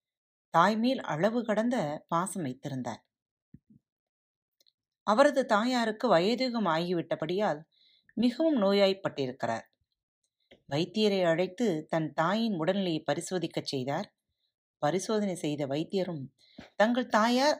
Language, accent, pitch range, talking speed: Tamil, native, 150-220 Hz, 80 wpm